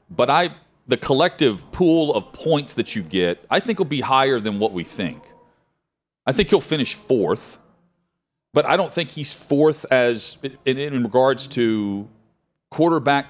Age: 40-59